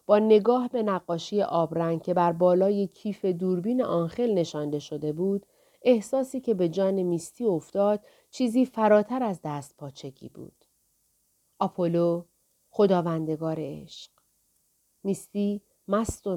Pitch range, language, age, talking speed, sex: 170-215 Hz, Persian, 40-59, 115 wpm, female